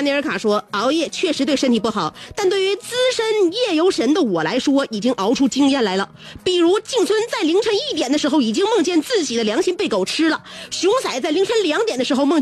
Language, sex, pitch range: Chinese, female, 270-390 Hz